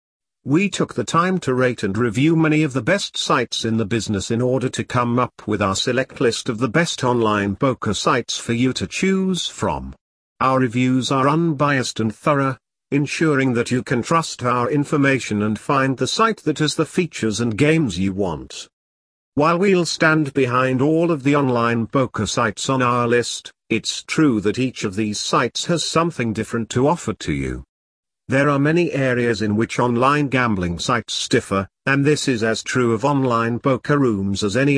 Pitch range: 110-150 Hz